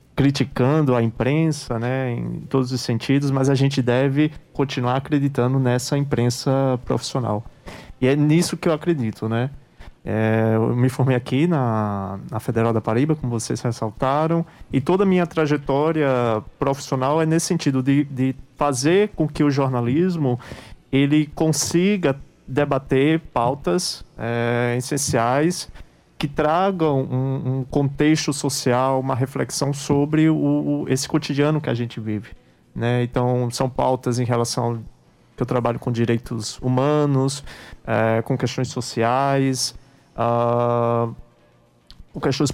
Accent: Brazilian